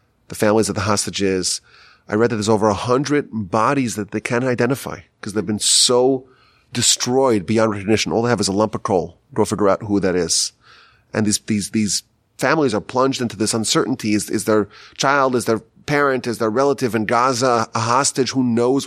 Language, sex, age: English, male, 30-49